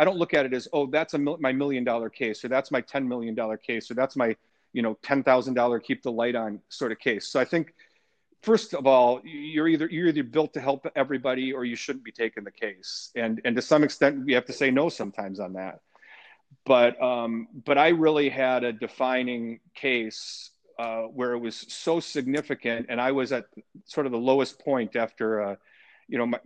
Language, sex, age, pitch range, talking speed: English, male, 40-59, 115-140 Hz, 225 wpm